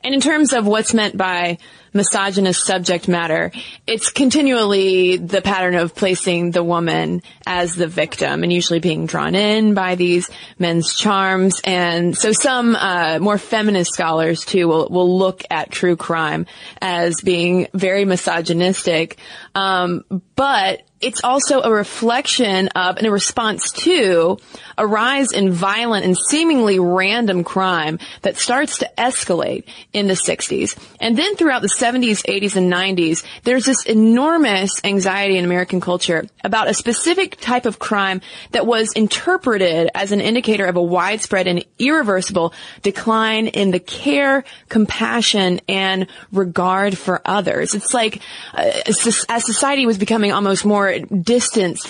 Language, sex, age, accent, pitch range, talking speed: English, female, 20-39, American, 180-225 Hz, 145 wpm